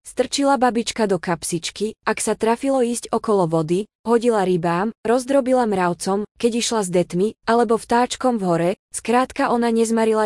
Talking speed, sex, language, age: 145 wpm, female, Slovak, 20-39